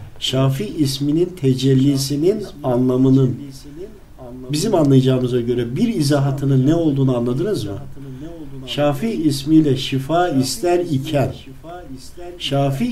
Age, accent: 50-69, native